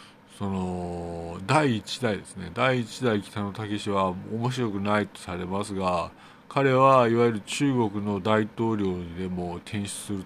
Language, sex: Japanese, male